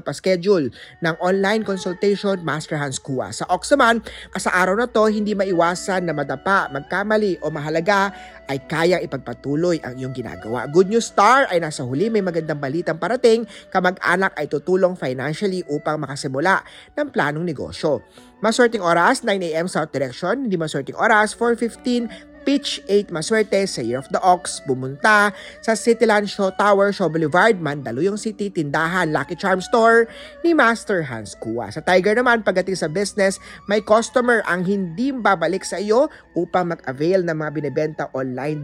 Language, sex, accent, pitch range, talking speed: Filipino, male, native, 150-210 Hz, 150 wpm